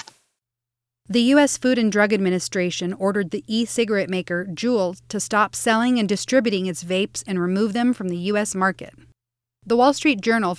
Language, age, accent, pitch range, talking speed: English, 30-49, American, 175-235 Hz, 165 wpm